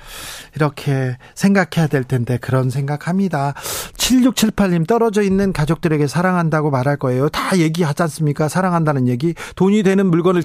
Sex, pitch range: male, 145-200 Hz